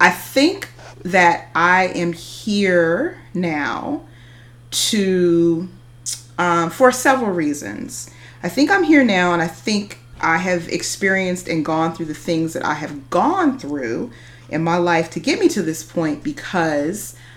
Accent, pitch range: American, 125-180 Hz